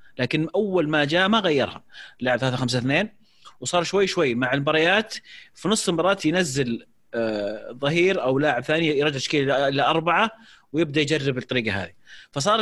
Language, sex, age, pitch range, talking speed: Arabic, male, 30-49, 120-170 Hz, 155 wpm